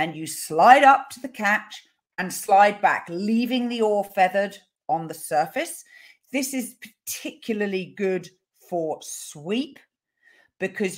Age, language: 40-59, English